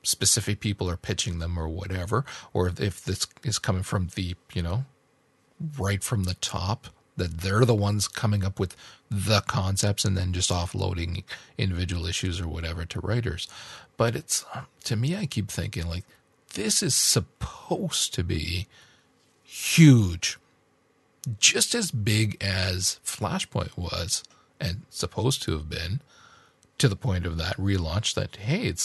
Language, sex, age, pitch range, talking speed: English, male, 40-59, 90-125 Hz, 150 wpm